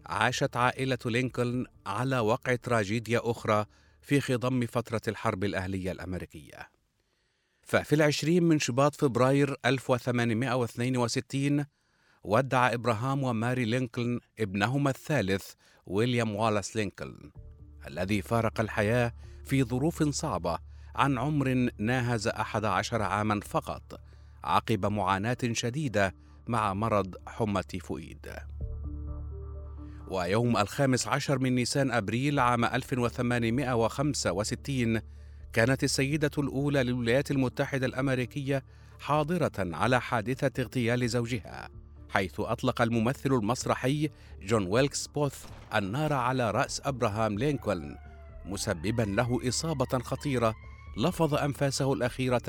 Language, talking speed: Arabic, 100 wpm